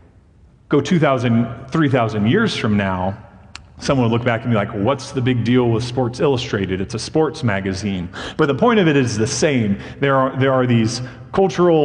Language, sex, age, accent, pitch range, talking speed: English, male, 30-49, American, 105-130 Hz, 185 wpm